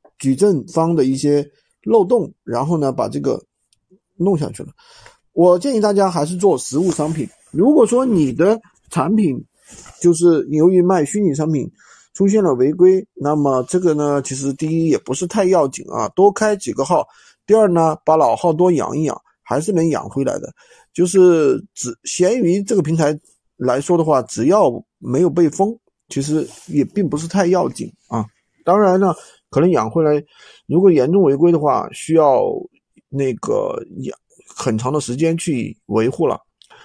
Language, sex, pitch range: Chinese, male, 150-195 Hz